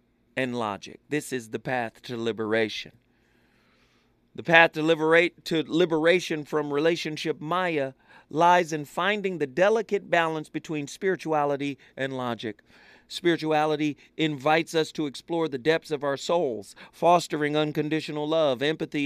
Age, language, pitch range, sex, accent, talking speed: 40-59, English, 145-205 Hz, male, American, 130 wpm